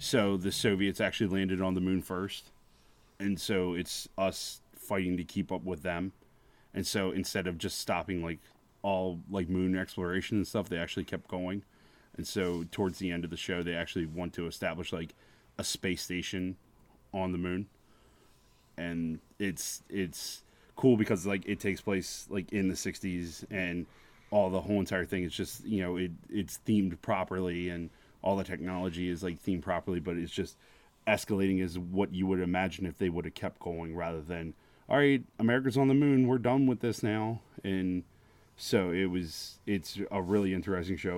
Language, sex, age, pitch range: English, male, 30-49, 90-100 Hz